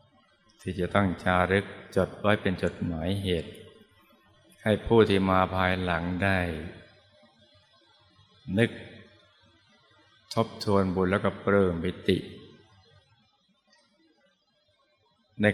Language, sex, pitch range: Thai, male, 90-100 Hz